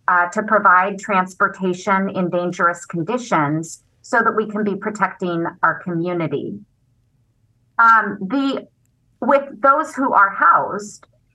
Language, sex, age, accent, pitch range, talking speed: English, female, 30-49, American, 180-230 Hz, 110 wpm